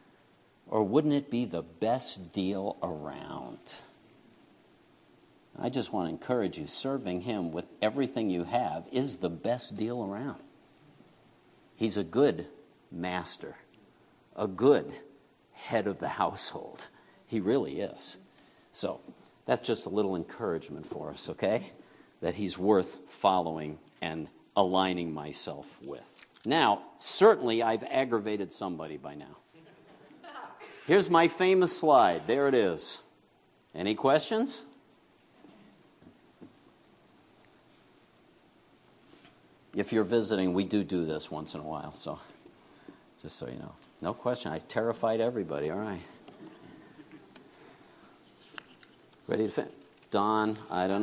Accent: American